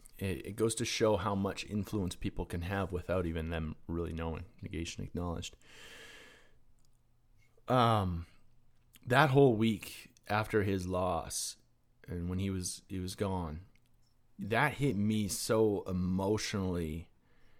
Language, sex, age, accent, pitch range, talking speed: English, male, 30-49, American, 90-115 Hz, 125 wpm